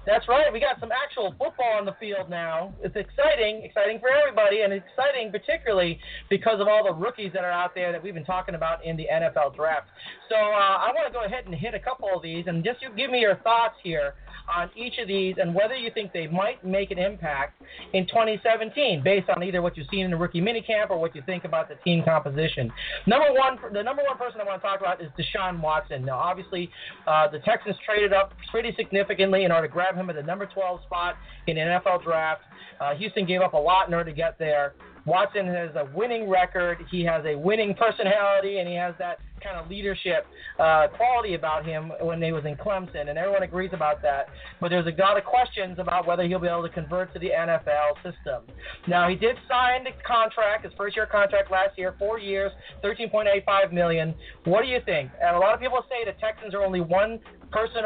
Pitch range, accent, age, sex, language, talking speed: 175-215 Hz, American, 40-59, male, English, 225 wpm